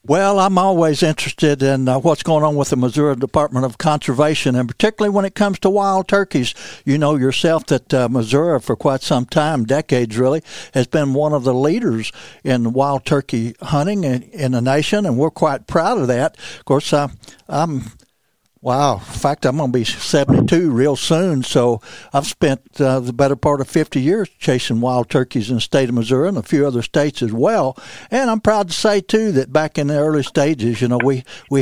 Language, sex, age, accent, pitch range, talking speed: English, male, 60-79, American, 125-155 Hz, 210 wpm